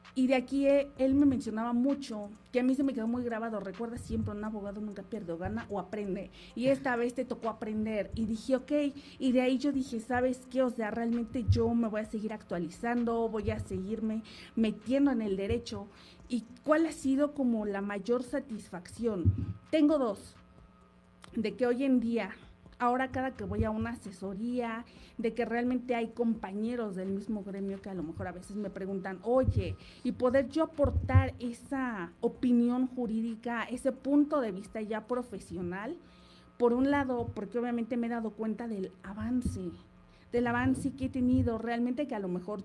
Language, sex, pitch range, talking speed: Spanish, female, 210-255 Hz, 180 wpm